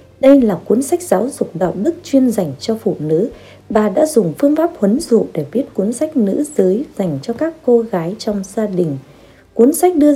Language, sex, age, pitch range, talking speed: Vietnamese, female, 20-39, 185-275 Hz, 220 wpm